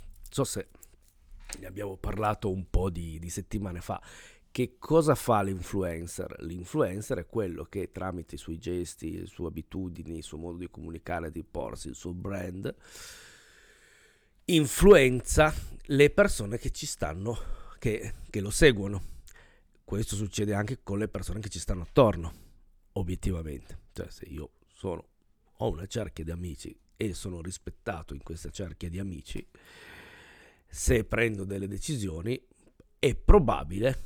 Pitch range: 85-110 Hz